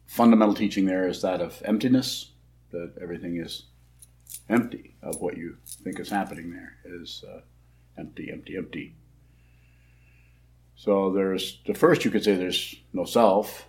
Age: 50-69